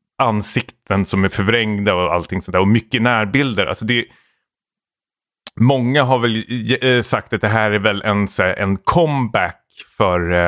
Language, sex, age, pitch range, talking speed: Swedish, male, 30-49, 95-120 Hz, 145 wpm